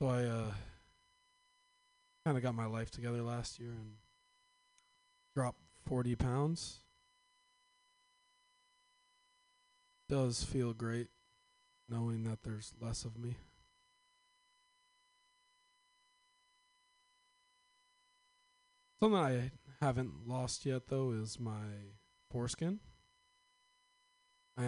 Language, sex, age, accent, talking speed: English, male, 20-39, American, 85 wpm